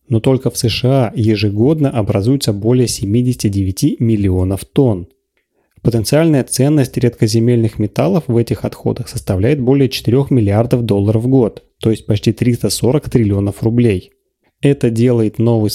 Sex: male